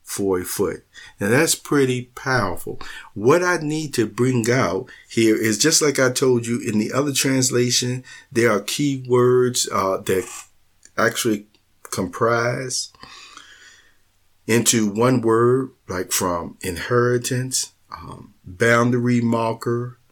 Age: 50-69